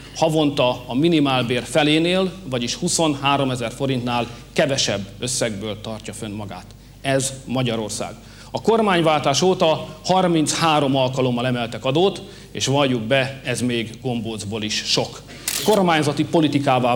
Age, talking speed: 40-59, 115 wpm